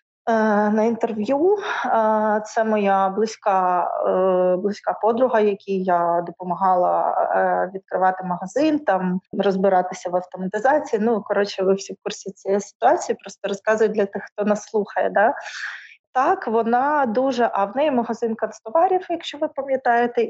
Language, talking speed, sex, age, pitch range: Ukrainian, 125 wpm, female, 20-39, 195-245 Hz